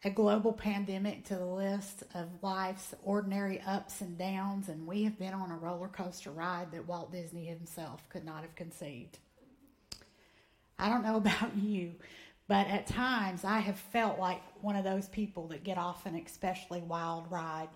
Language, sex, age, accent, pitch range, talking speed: English, female, 30-49, American, 170-200 Hz, 175 wpm